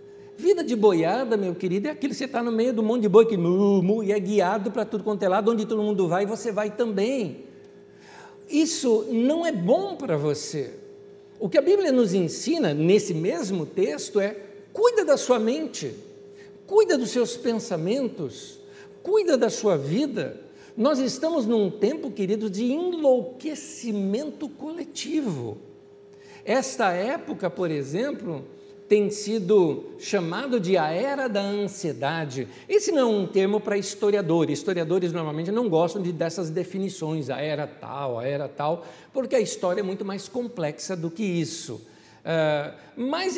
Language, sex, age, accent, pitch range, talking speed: Portuguese, male, 60-79, Brazilian, 180-265 Hz, 155 wpm